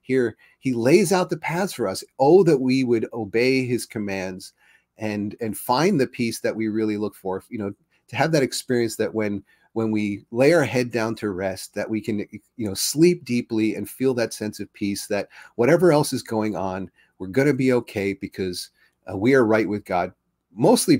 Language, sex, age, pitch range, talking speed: English, male, 30-49, 105-120 Hz, 210 wpm